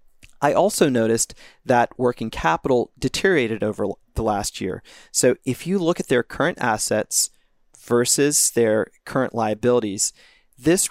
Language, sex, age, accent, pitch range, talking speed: English, male, 30-49, American, 110-140 Hz, 130 wpm